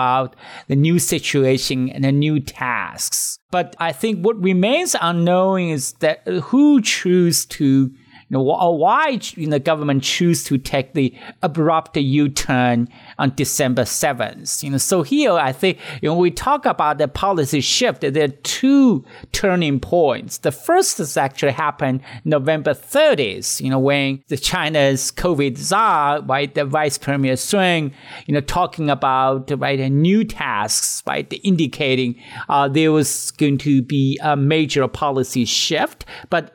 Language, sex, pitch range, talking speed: English, male, 135-175 Hz, 150 wpm